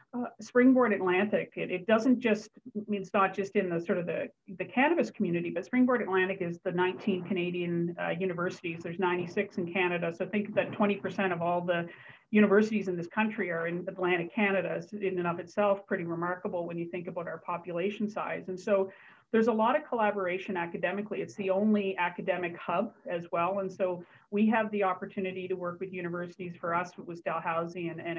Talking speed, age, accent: 195 wpm, 40-59, American